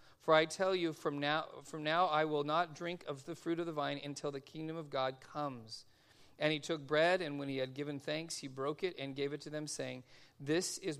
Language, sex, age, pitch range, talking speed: English, male, 40-59, 140-170 Hz, 245 wpm